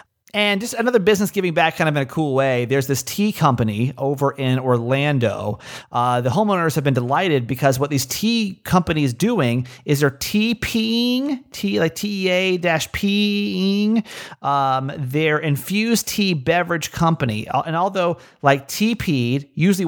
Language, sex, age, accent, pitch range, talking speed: English, male, 30-49, American, 130-180 Hz, 150 wpm